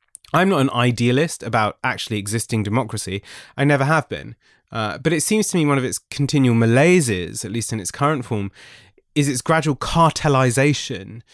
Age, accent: 20-39, British